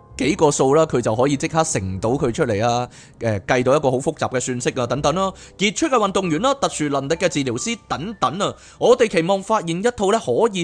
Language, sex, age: Chinese, male, 20-39